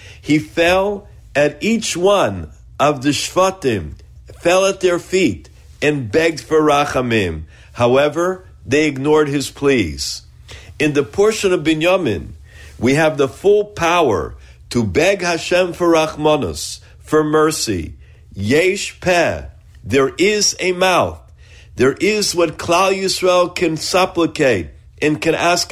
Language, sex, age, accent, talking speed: English, male, 50-69, American, 125 wpm